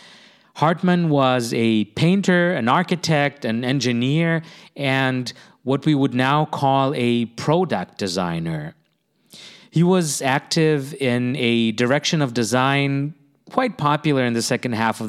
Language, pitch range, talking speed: English, 115-150 Hz, 125 wpm